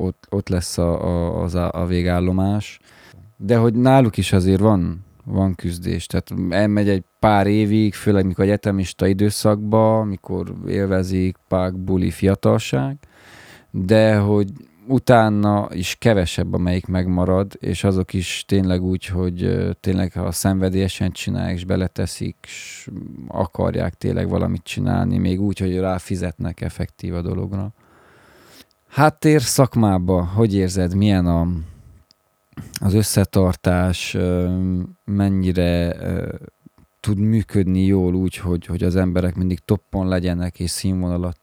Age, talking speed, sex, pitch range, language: 20-39, 125 wpm, male, 90-105 Hz, Hungarian